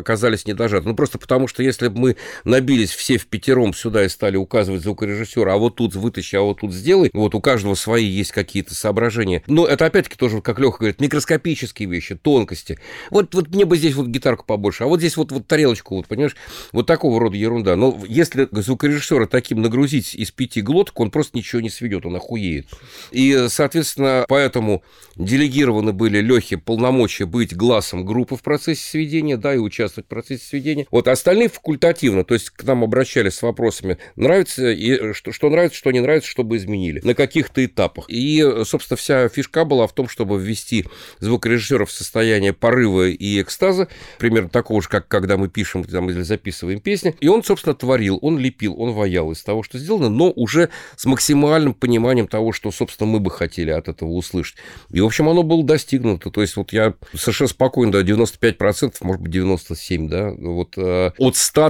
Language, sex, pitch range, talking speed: Russian, male, 100-135 Hz, 190 wpm